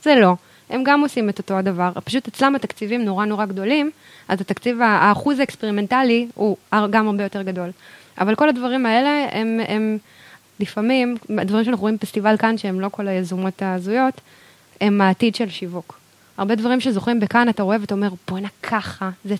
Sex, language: female, Hebrew